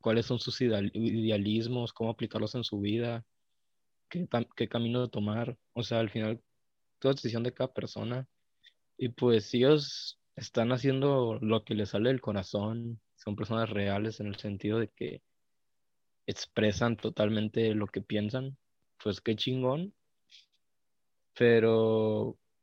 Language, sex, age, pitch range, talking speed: Spanish, male, 20-39, 105-125 Hz, 140 wpm